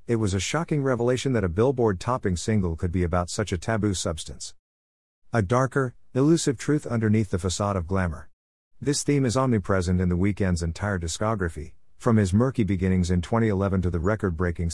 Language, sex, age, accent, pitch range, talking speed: English, male, 50-69, American, 85-110 Hz, 170 wpm